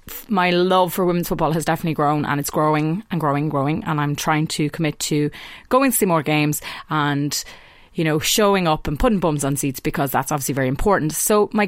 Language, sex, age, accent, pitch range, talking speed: English, female, 30-49, Irish, 150-185 Hz, 220 wpm